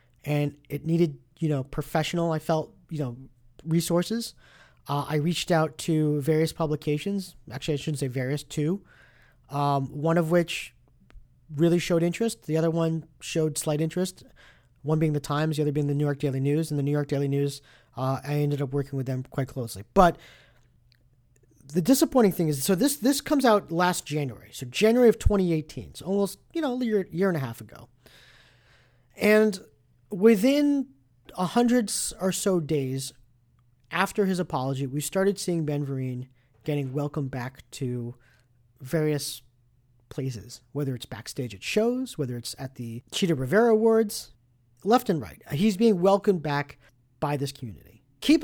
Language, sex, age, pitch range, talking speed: English, male, 40-59, 130-180 Hz, 165 wpm